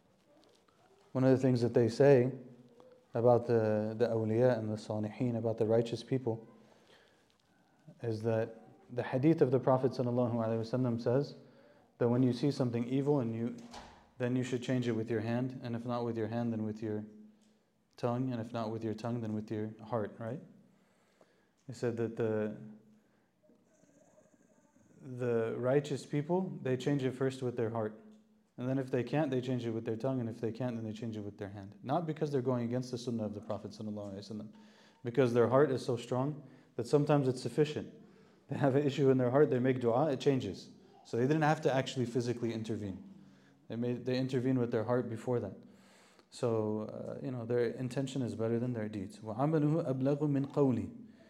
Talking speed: 190 wpm